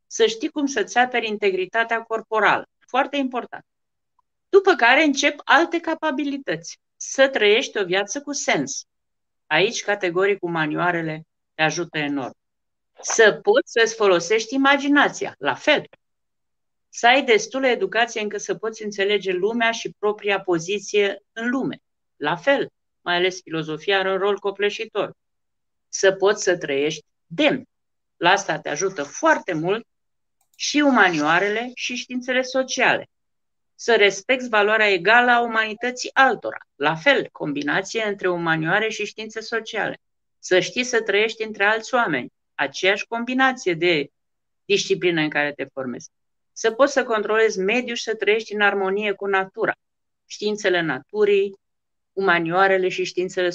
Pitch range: 190-255 Hz